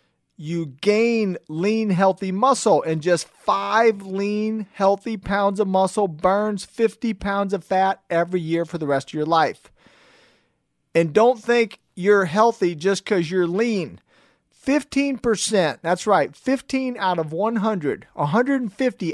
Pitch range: 180-230 Hz